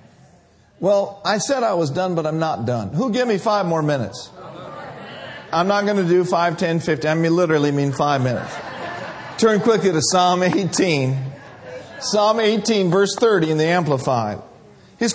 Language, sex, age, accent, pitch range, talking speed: English, male, 50-69, American, 145-235 Hz, 170 wpm